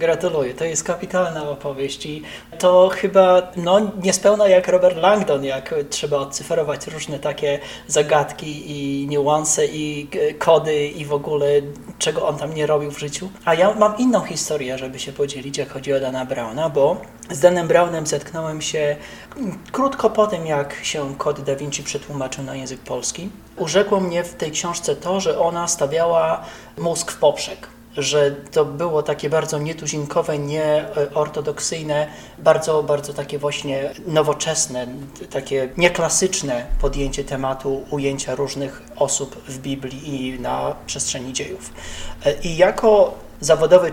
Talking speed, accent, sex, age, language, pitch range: 140 wpm, native, male, 30-49, Polish, 140-175 Hz